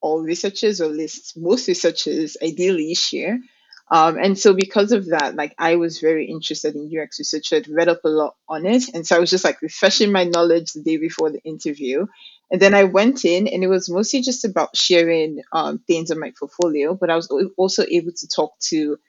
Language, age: English, 20-39